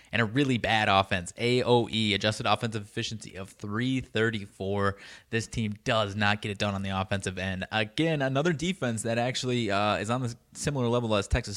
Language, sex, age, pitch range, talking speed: English, male, 20-39, 100-120 Hz, 180 wpm